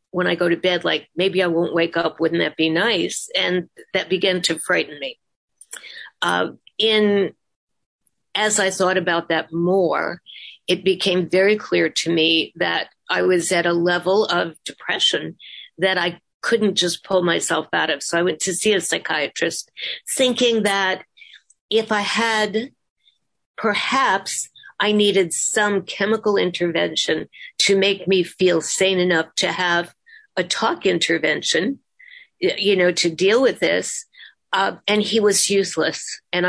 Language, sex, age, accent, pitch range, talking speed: English, female, 50-69, American, 170-210 Hz, 150 wpm